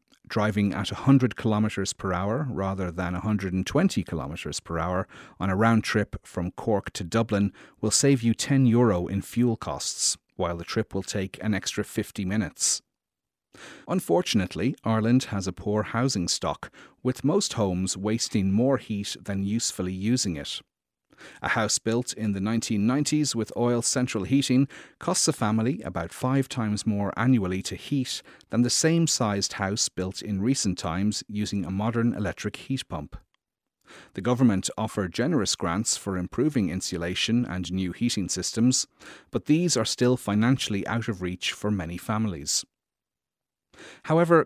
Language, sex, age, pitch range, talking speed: English, male, 40-59, 95-125 Hz, 150 wpm